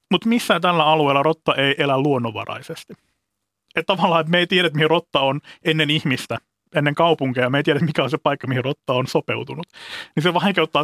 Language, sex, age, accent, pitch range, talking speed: Finnish, male, 30-49, native, 125-160 Hz, 195 wpm